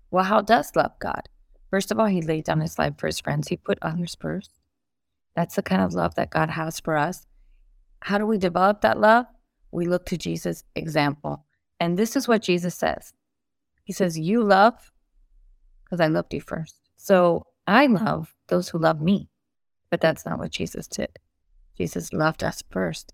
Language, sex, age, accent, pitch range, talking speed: English, female, 30-49, American, 155-190 Hz, 190 wpm